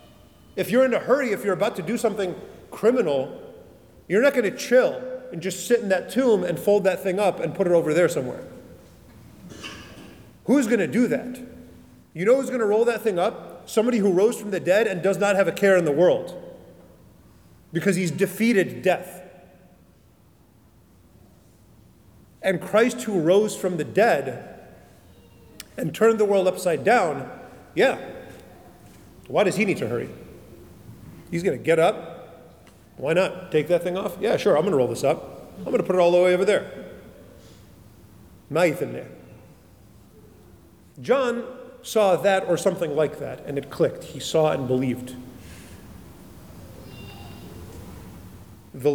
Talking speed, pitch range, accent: 165 wpm, 125-195 Hz, American